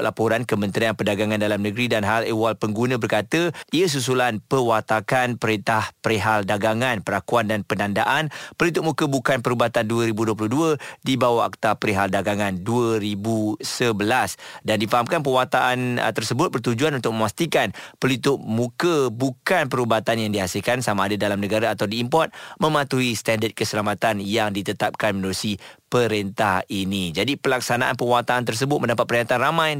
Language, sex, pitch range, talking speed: Malay, male, 110-135 Hz, 130 wpm